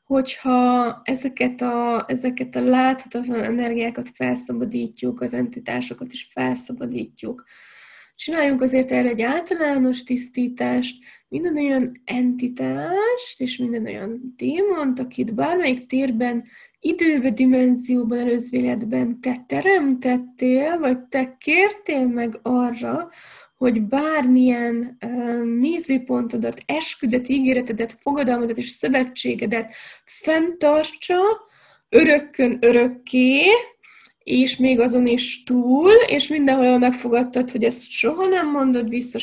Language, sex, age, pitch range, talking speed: Hungarian, female, 20-39, 240-280 Hz, 95 wpm